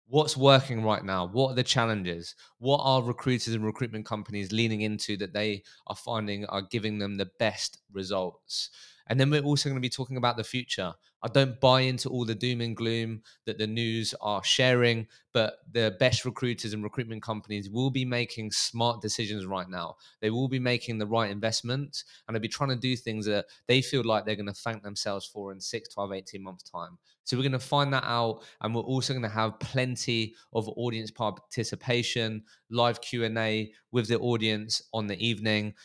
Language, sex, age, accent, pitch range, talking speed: English, male, 20-39, British, 110-125 Hz, 195 wpm